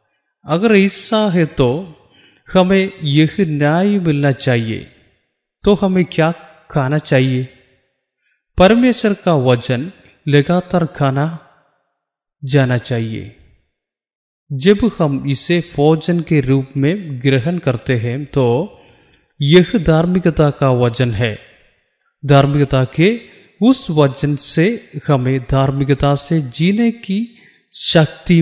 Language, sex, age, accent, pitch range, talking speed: Malayalam, male, 30-49, native, 130-180 Hz, 30 wpm